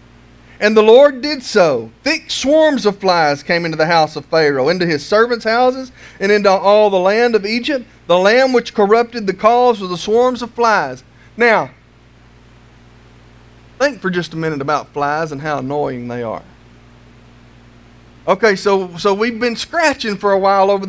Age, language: 40-59, English